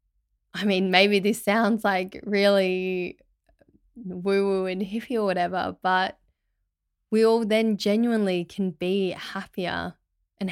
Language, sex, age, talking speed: English, female, 10-29, 120 wpm